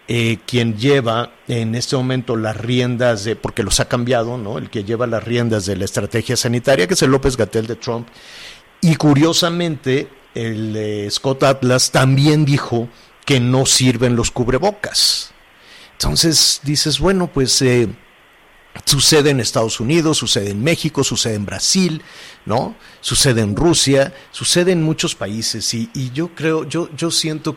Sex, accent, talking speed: male, Mexican, 160 wpm